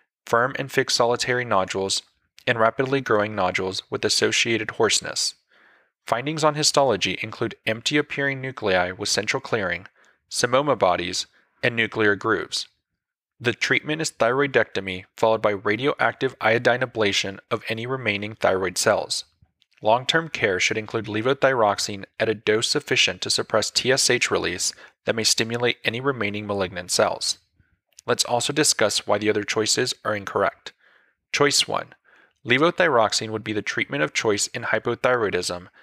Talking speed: 135 wpm